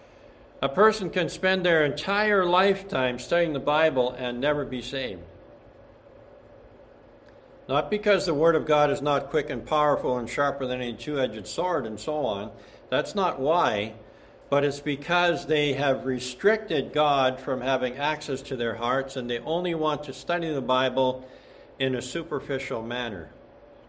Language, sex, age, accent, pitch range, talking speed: English, male, 60-79, American, 130-175 Hz, 155 wpm